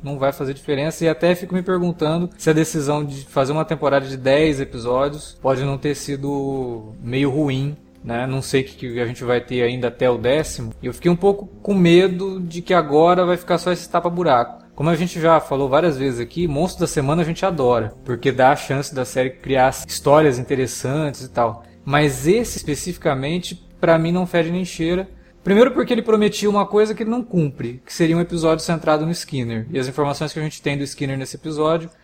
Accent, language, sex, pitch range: Brazilian, Portuguese, male, 135-170 Hz